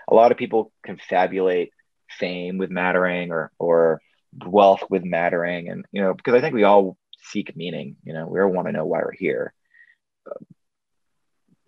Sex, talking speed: male, 175 wpm